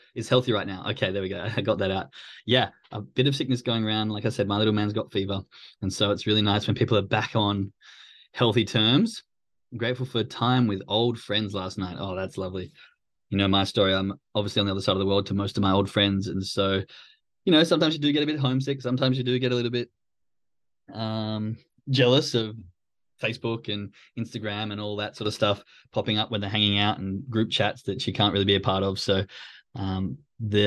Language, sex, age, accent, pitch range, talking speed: English, male, 20-39, Australian, 100-120 Hz, 235 wpm